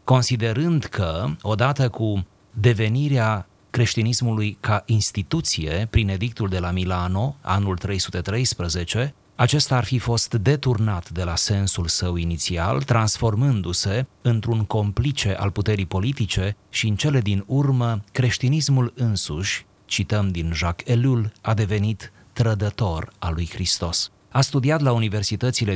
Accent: native